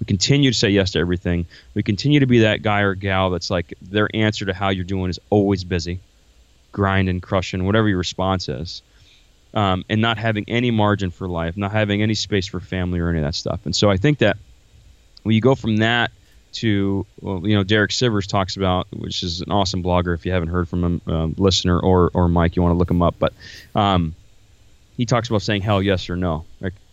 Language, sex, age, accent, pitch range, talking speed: English, male, 20-39, American, 90-110 Hz, 230 wpm